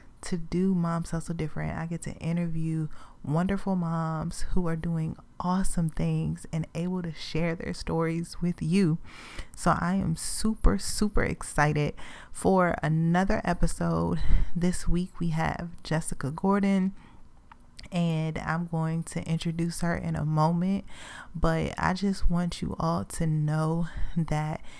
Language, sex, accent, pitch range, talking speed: English, female, American, 160-185 Hz, 140 wpm